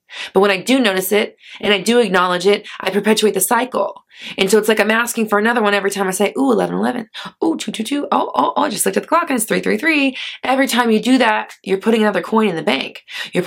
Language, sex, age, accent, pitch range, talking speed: English, female, 20-39, American, 195-245 Hz, 260 wpm